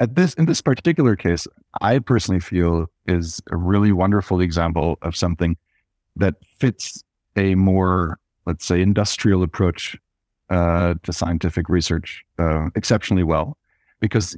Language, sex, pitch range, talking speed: English, male, 90-115 Hz, 135 wpm